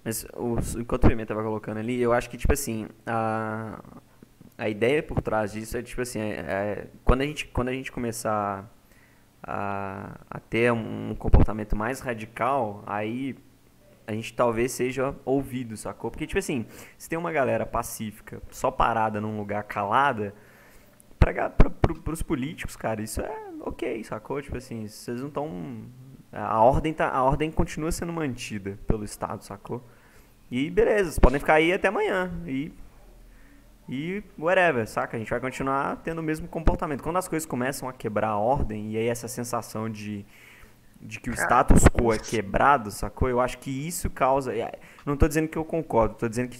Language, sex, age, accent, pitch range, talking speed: Portuguese, male, 20-39, Brazilian, 110-135 Hz, 175 wpm